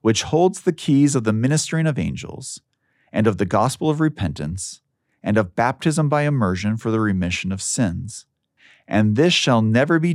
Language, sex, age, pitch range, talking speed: English, male, 40-59, 105-145 Hz, 175 wpm